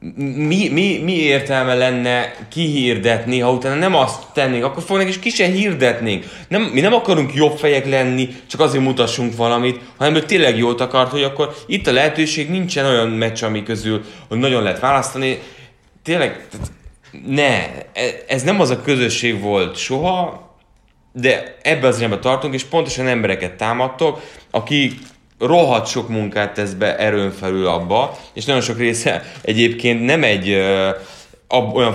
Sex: male